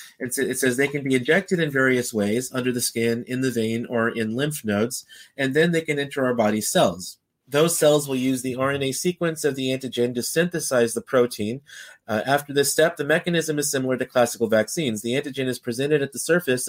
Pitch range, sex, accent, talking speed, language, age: 115-140 Hz, male, American, 210 wpm, English, 30-49